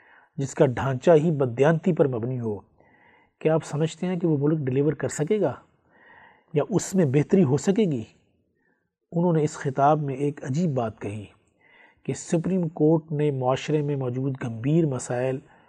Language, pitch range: Urdu, 130-170 Hz